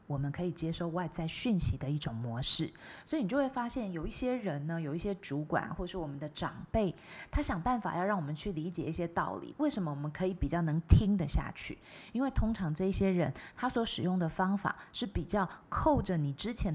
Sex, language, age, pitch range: female, Chinese, 20-39, 155-200 Hz